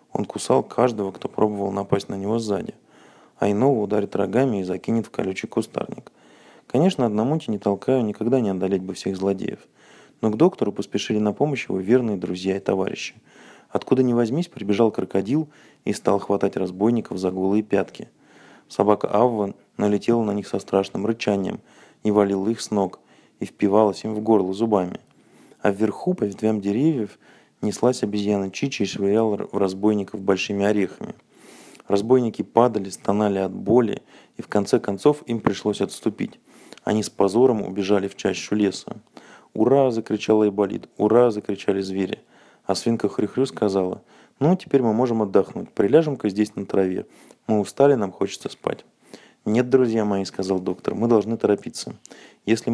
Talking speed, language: 160 wpm, Russian